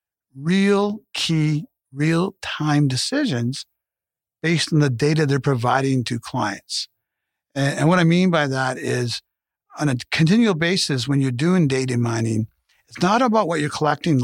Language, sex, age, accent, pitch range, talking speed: English, male, 50-69, American, 125-165 Hz, 150 wpm